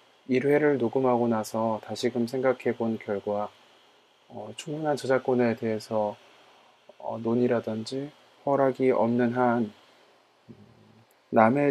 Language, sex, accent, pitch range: Korean, male, native, 110-130 Hz